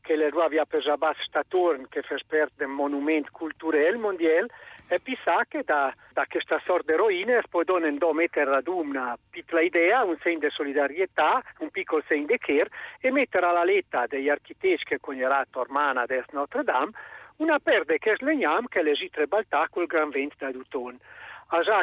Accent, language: native, Italian